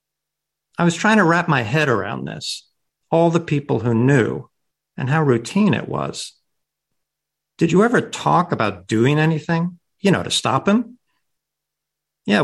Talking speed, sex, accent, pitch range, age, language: 155 wpm, male, American, 120-160 Hz, 50-69, English